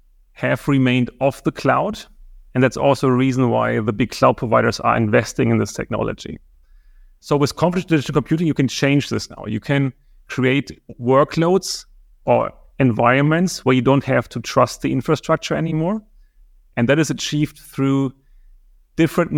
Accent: German